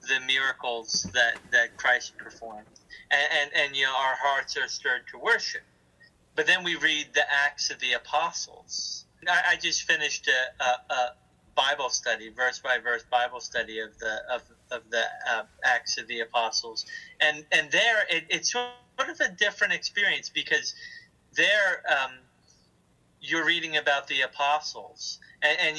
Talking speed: 165 wpm